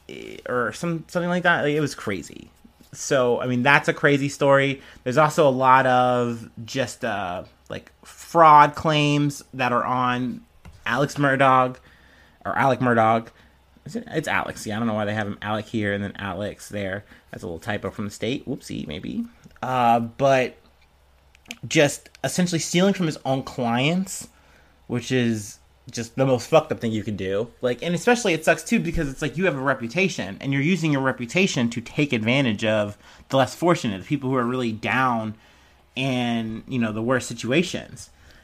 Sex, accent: male, American